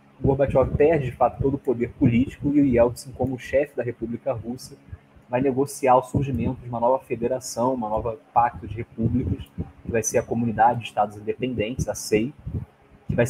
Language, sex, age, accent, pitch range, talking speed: Portuguese, male, 20-39, Brazilian, 110-135 Hz, 190 wpm